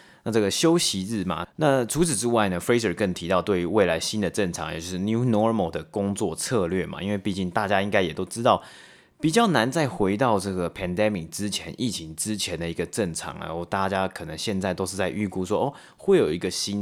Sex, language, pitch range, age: male, Chinese, 90-115 Hz, 30-49